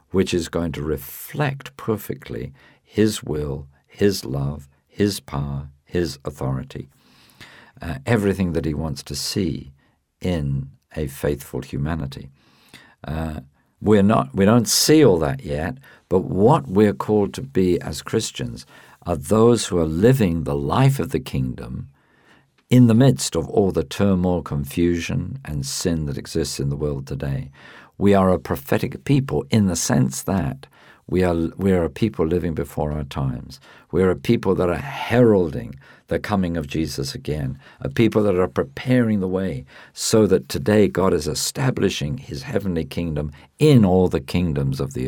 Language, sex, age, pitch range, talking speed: English, male, 50-69, 70-100 Hz, 160 wpm